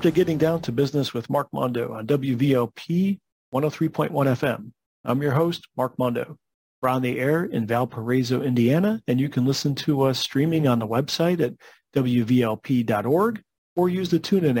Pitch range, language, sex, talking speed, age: 115-155 Hz, English, male, 165 wpm, 40-59